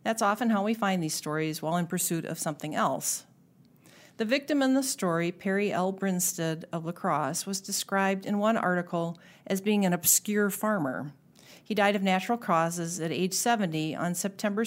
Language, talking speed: English, 180 wpm